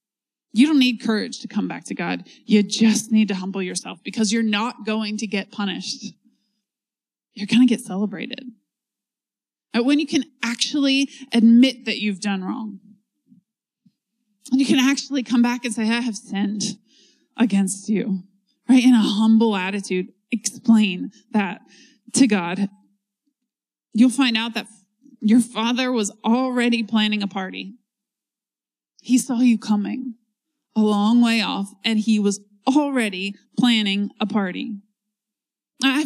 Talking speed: 145 wpm